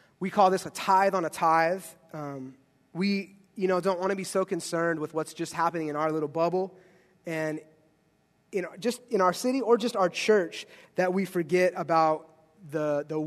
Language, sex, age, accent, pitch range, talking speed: English, male, 30-49, American, 155-185 Hz, 190 wpm